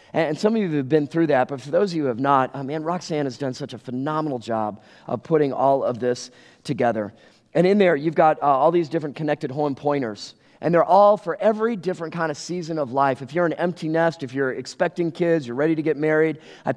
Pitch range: 125-160 Hz